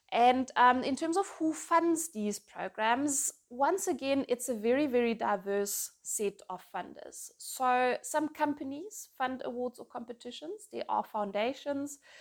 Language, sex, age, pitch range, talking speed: English, female, 20-39, 210-280 Hz, 145 wpm